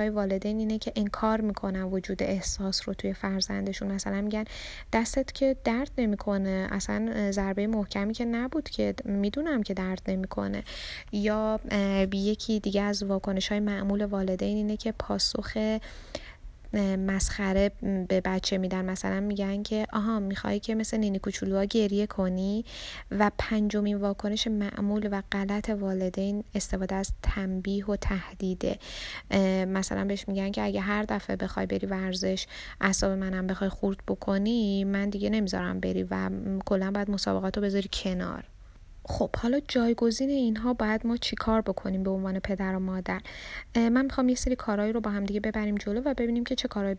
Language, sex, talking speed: Persian, female, 150 wpm